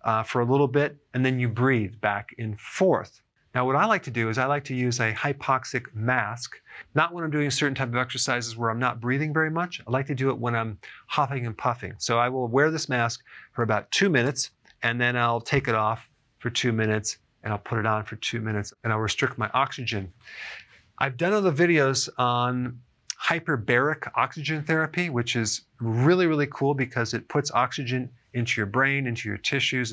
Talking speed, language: 215 wpm, English